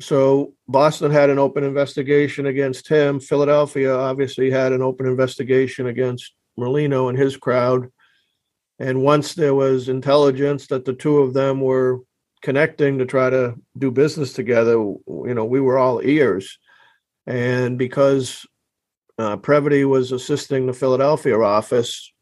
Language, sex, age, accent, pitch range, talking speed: English, male, 50-69, American, 125-140 Hz, 140 wpm